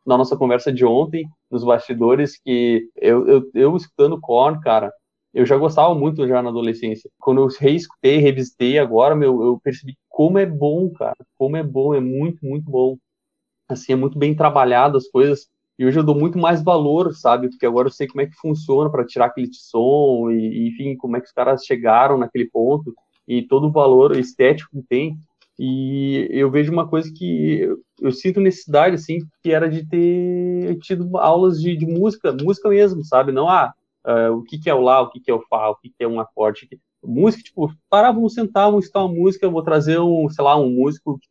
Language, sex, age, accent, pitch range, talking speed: Portuguese, male, 20-39, Brazilian, 130-165 Hz, 210 wpm